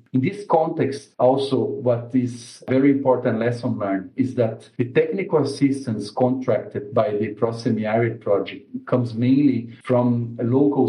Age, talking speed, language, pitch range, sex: 50-69, 140 wpm, English, 120-140 Hz, male